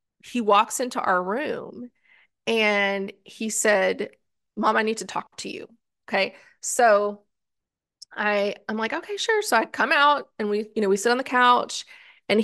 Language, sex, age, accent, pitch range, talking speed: English, female, 20-39, American, 200-255 Hz, 175 wpm